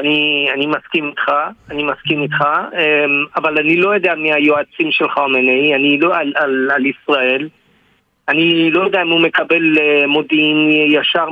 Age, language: 50-69, Hebrew